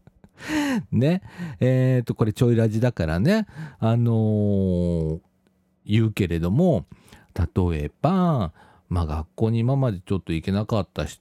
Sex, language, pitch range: male, Japanese, 95-140 Hz